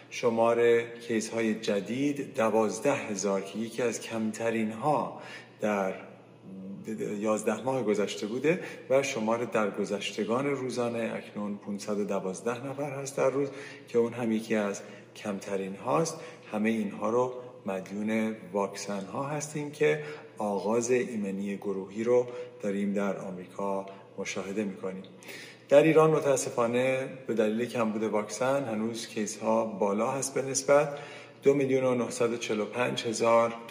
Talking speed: 115 wpm